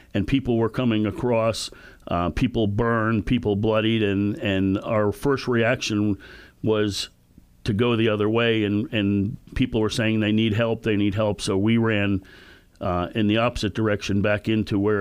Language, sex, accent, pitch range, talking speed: English, male, American, 95-110 Hz, 170 wpm